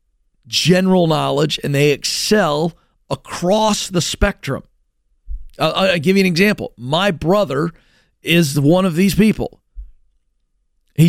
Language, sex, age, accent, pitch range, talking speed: English, male, 40-59, American, 140-210 Hz, 125 wpm